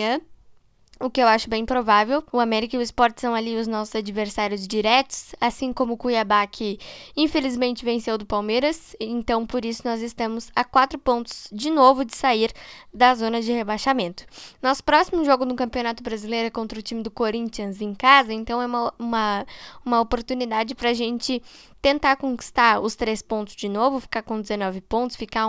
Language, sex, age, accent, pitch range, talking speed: Portuguese, female, 10-29, Brazilian, 215-260 Hz, 180 wpm